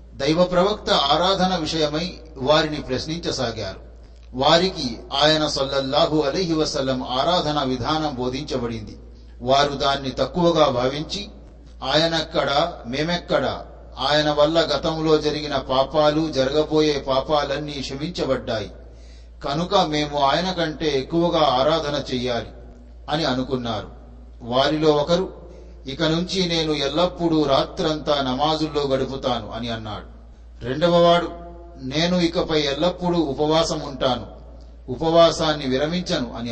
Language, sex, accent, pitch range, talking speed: Telugu, male, native, 125-160 Hz, 90 wpm